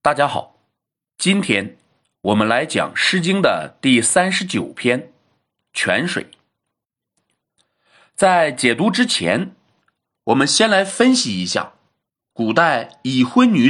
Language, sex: Chinese, male